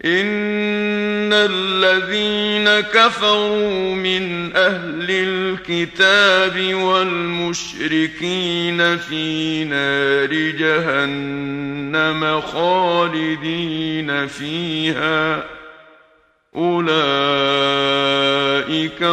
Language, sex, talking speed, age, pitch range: Arabic, male, 40 wpm, 50-69, 160-190 Hz